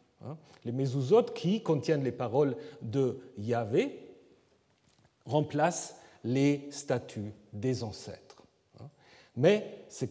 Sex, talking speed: male, 90 wpm